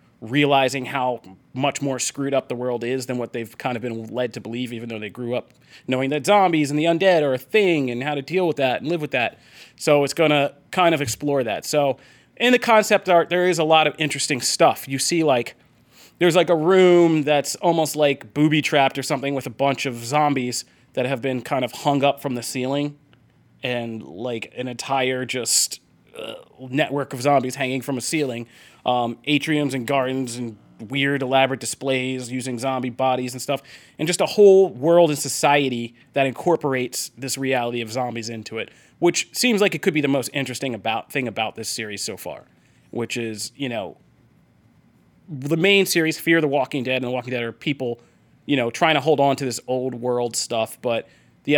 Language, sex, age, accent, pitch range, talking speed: English, male, 30-49, American, 125-150 Hz, 205 wpm